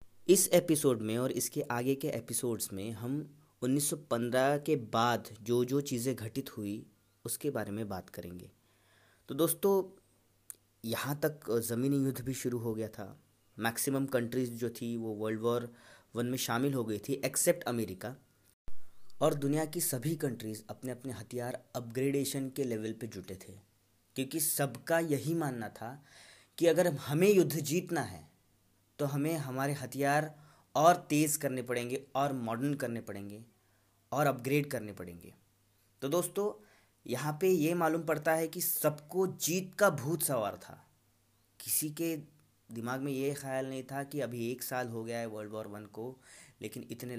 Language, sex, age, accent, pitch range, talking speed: Hindi, male, 20-39, native, 110-145 Hz, 160 wpm